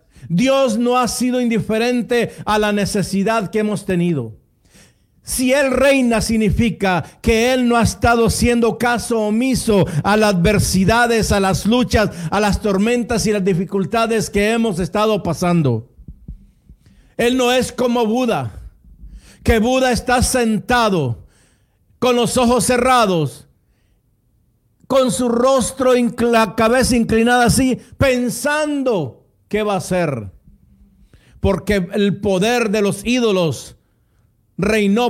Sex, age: male, 50-69